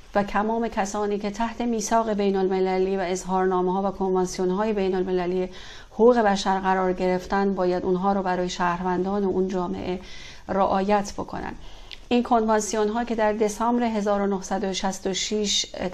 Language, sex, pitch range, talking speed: Persian, female, 190-215 Hz, 130 wpm